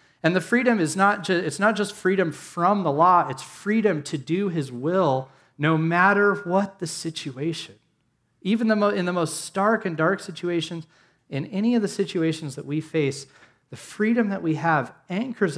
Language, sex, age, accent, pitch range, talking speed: English, male, 30-49, American, 125-165 Hz, 185 wpm